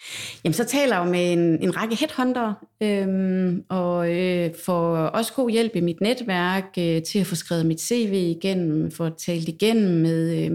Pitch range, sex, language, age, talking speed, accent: 165-205 Hz, female, Danish, 30-49, 190 wpm, native